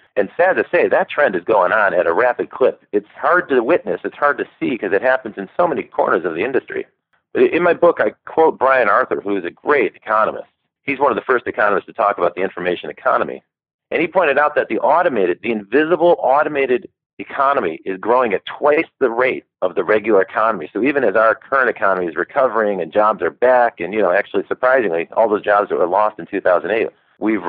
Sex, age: male, 40-59